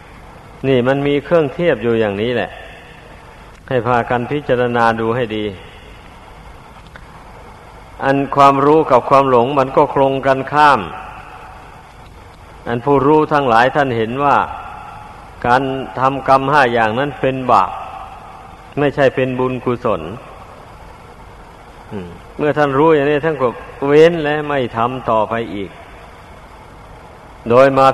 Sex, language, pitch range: male, Thai, 125-140 Hz